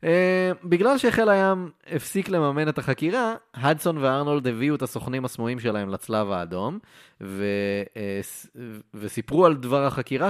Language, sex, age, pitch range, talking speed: Hebrew, male, 20-39, 100-145 Hz, 130 wpm